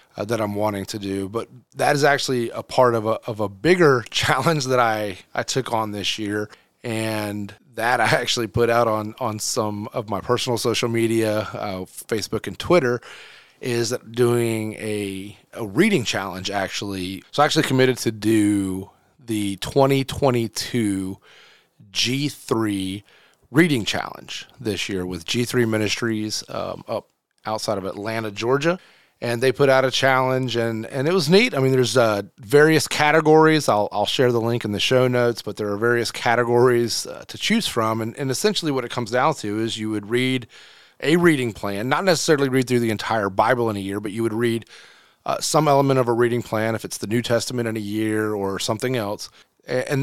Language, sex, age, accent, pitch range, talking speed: English, male, 30-49, American, 105-130 Hz, 185 wpm